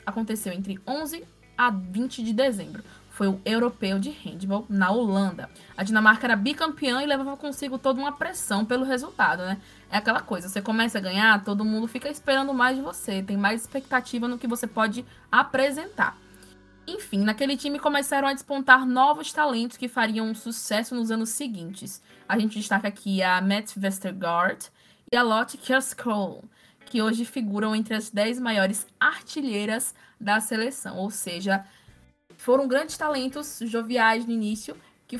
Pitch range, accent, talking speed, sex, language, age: 205-260 Hz, Brazilian, 160 wpm, female, Portuguese, 20-39